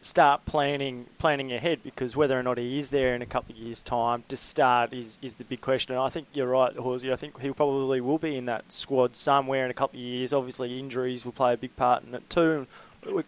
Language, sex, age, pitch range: English, male, 20-39, 125-145 Hz